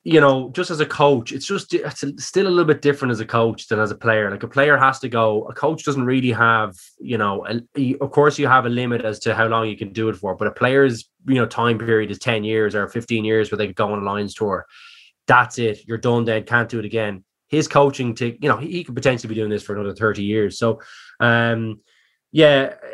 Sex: male